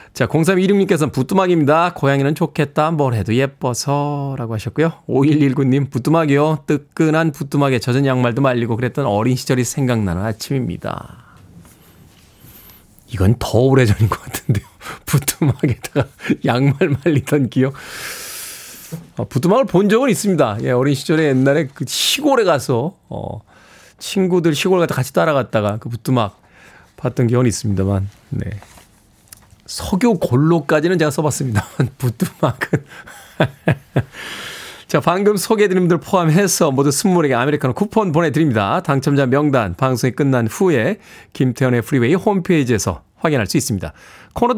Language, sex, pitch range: Korean, male, 125-170 Hz